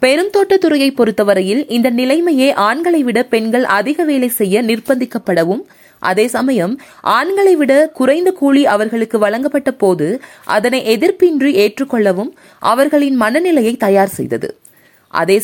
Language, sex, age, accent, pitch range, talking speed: Tamil, female, 20-39, native, 215-300 Hz, 100 wpm